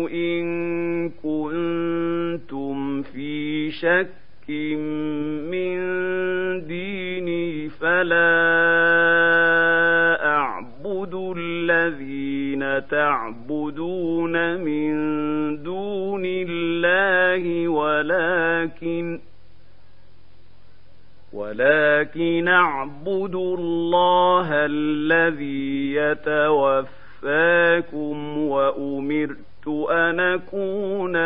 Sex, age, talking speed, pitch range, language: male, 50-69, 40 wpm, 150-175 Hz, Arabic